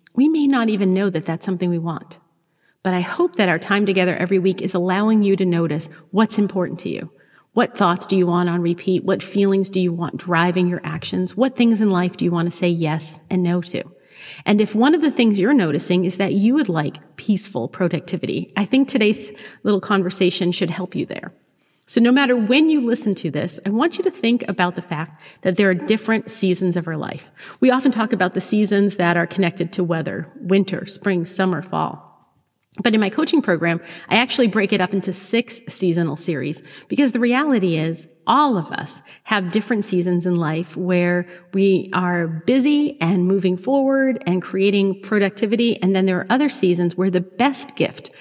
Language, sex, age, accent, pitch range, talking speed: English, female, 40-59, American, 175-215 Hz, 205 wpm